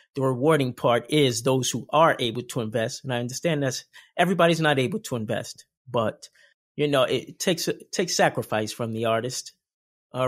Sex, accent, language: male, American, English